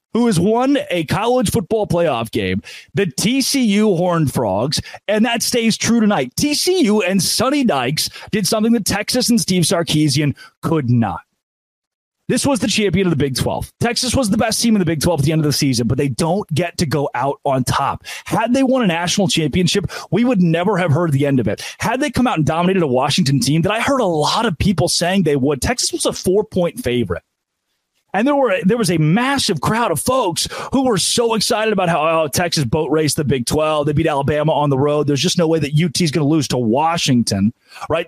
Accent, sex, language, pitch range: American, male, English, 145-205 Hz